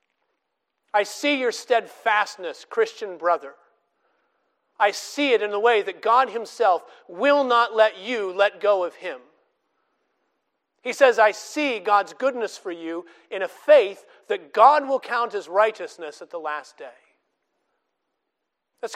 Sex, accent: male, American